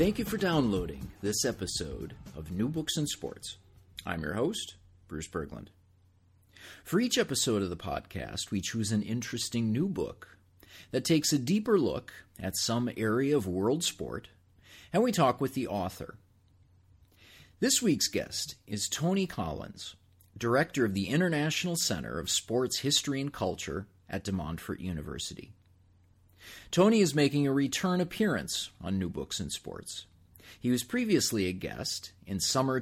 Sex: male